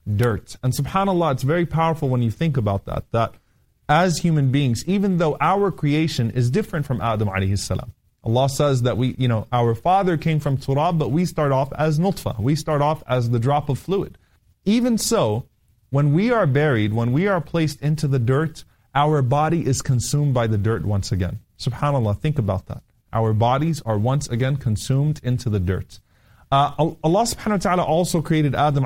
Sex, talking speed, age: male, 195 wpm, 30-49